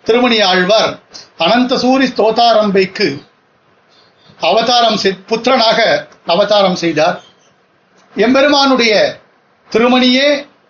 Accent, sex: native, male